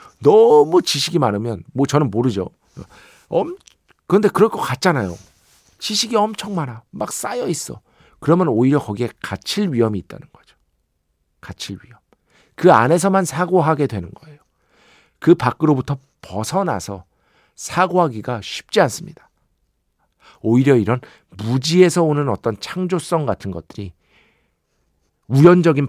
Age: 50-69